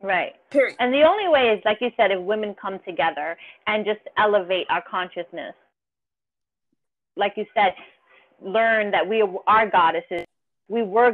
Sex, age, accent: female, 30-49, American